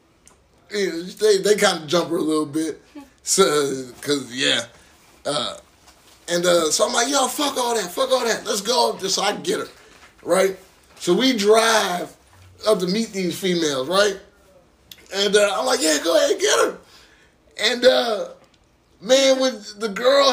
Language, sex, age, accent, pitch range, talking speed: English, male, 20-39, American, 175-245 Hz, 175 wpm